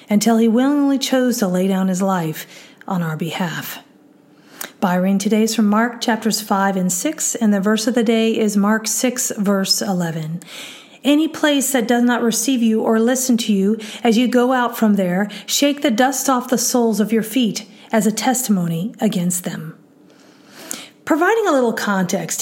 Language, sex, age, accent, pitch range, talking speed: English, female, 40-59, American, 210-265 Hz, 180 wpm